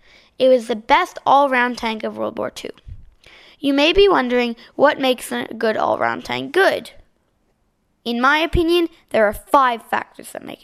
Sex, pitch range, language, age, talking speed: female, 225-290 Hz, English, 10-29, 170 wpm